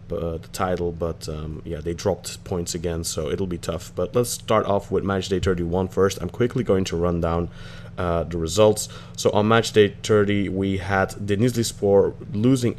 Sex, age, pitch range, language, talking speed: male, 20-39, 95-110 Hz, English, 195 wpm